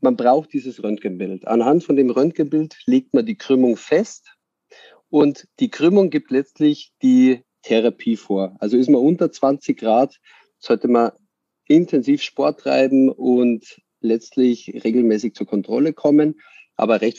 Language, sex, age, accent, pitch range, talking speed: German, male, 40-59, German, 120-160 Hz, 140 wpm